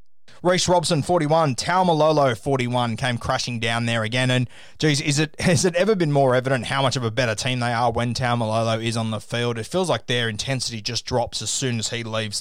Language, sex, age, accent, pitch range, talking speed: English, male, 20-39, Australian, 120-150 Hz, 230 wpm